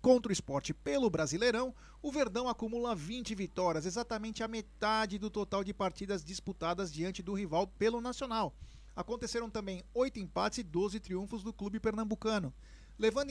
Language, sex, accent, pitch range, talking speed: Portuguese, male, Brazilian, 180-225 Hz, 155 wpm